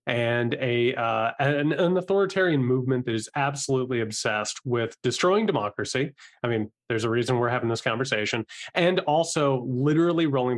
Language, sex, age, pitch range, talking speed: English, male, 30-49, 120-155 Hz, 155 wpm